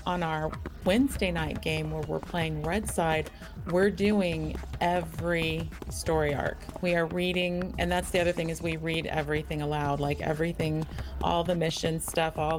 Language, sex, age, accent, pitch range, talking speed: English, female, 30-49, American, 155-215 Hz, 165 wpm